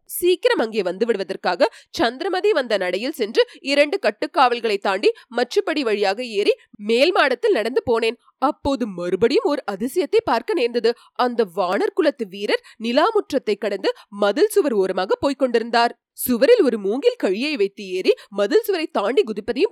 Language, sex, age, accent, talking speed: Tamil, female, 30-49, native, 135 wpm